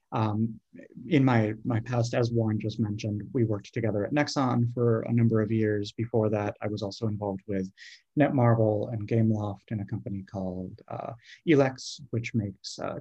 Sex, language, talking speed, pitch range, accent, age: male, English, 175 wpm, 110-125 Hz, American, 30-49